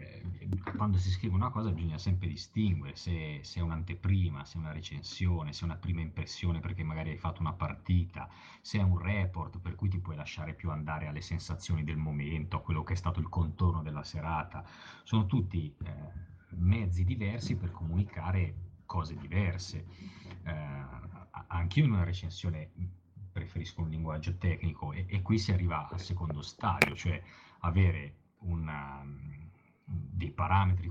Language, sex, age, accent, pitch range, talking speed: Italian, male, 30-49, native, 80-95 Hz, 160 wpm